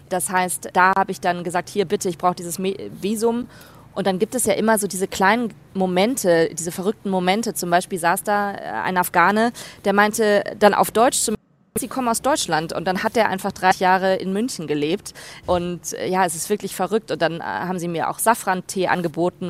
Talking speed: 200 wpm